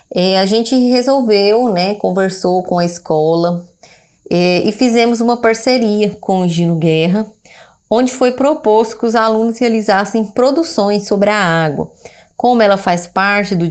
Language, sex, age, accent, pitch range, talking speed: Portuguese, female, 20-39, Brazilian, 175-225 Hz, 150 wpm